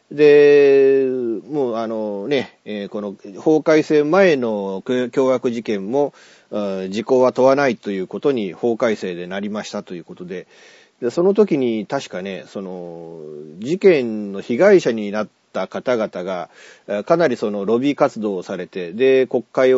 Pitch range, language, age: 100-145 Hz, Japanese, 40-59